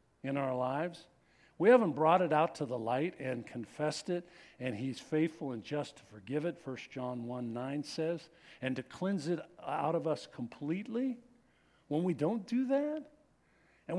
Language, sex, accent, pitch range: English, male, American, 125-185 Hz